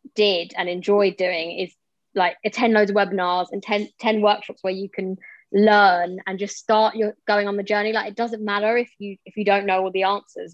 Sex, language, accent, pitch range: female, English, British, 190-215 Hz